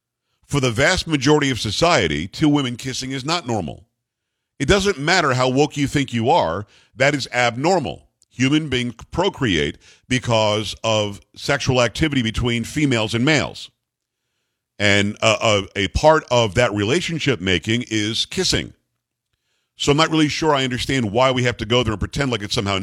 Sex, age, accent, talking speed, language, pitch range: male, 50-69, American, 170 wpm, English, 115-145 Hz